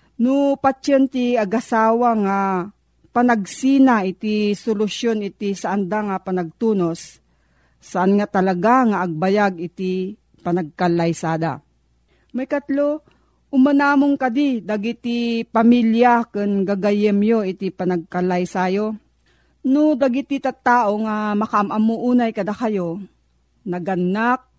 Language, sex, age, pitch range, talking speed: Filipino, female, 40-59, 195-245 Hz, 95 wpm